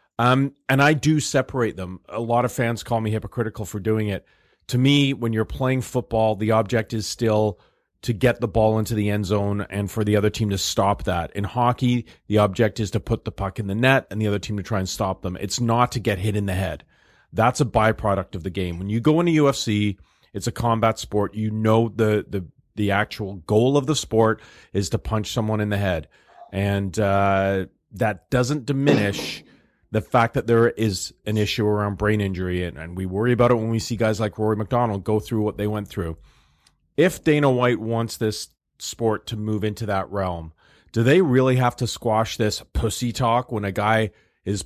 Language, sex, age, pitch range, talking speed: English, male, 40-59, 105-125 Hz, 215 wpm